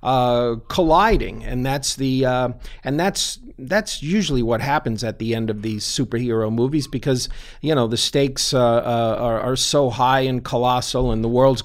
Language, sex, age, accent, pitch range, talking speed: English, male, 50-69, American, 120-160 Hz, 180 wpm